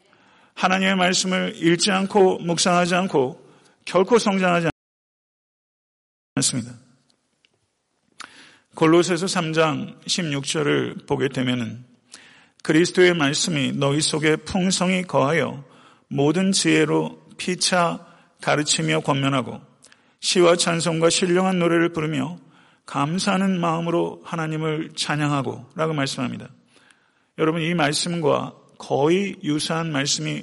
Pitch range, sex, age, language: 140-175 Hz, male, 40-59, Korean